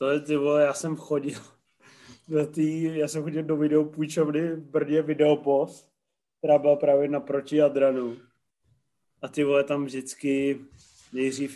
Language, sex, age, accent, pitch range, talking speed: Czech, male, 20-39, native, 135-160 Hz, 130 wpm